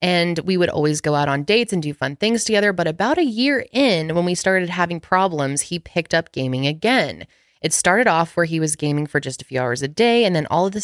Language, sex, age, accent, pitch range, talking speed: English, female, 20-39, American, 145-185 Hz, 260 wpm